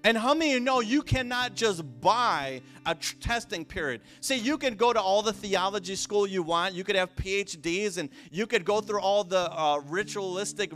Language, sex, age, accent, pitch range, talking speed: English, male, 30-49, American, 205-255 Hz, 205 wpm